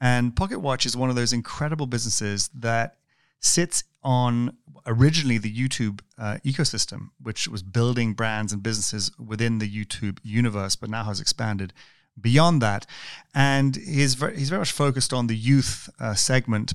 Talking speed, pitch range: 155 wpm, 110-130 Hz